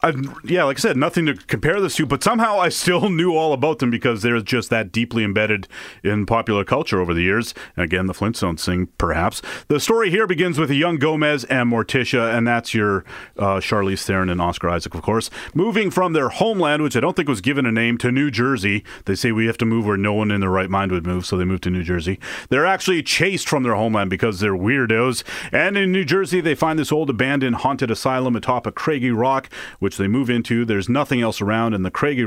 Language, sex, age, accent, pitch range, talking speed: English, male, 30-49, American, 105-150 Hz, 235 wpm